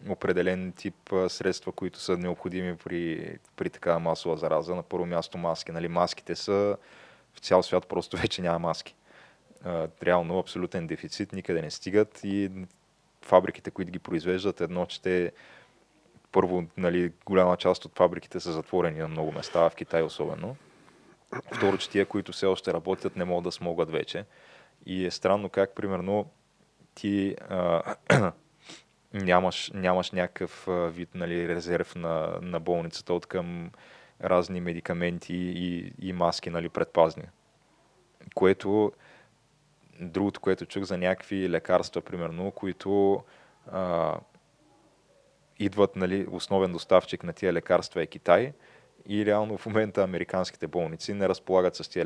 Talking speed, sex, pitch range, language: 140 wpm, male, 85-95 Hz, Bulgarian